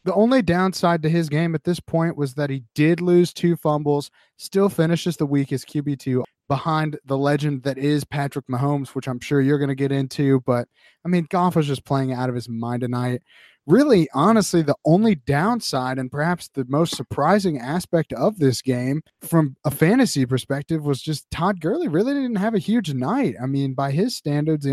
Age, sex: 30-49, male